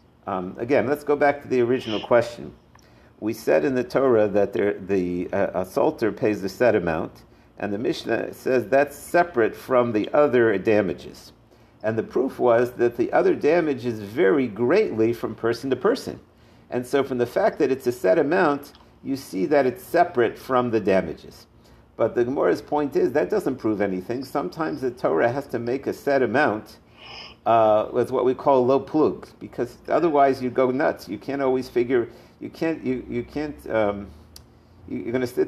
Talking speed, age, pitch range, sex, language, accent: 185 wpm, 50-69, 105-135 Hz, male, English, American